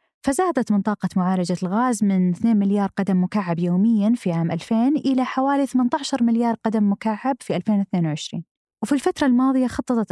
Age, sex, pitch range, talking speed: 20-39, female, 185-245 Hz, 150 wpm